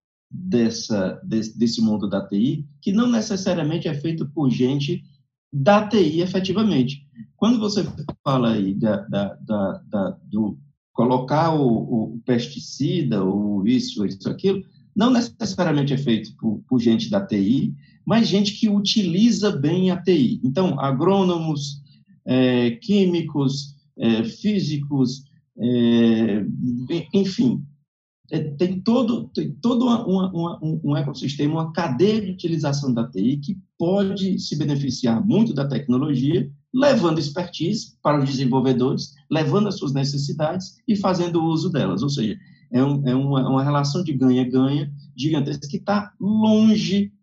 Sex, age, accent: male, 50-69, Brazilian